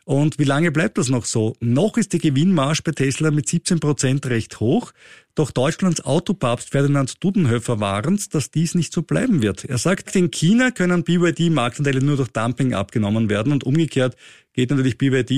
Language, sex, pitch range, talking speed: German, male, 115-150 Hz, 175 wpm